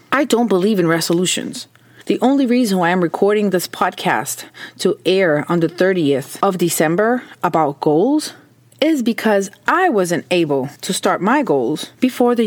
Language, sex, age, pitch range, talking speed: English, female, 30-49, 180-240 Hz, 160 wpm